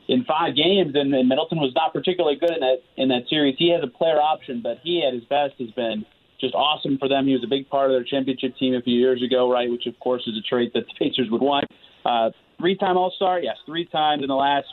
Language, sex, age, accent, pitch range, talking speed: English, male, 30-49, American, 125-145 Hz, 265 wpm